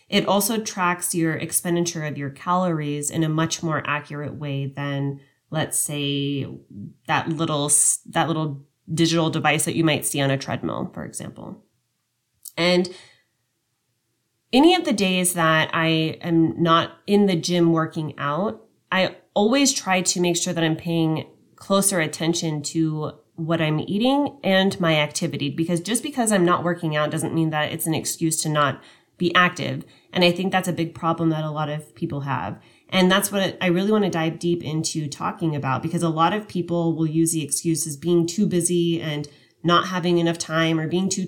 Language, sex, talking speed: English, female, 185 wpm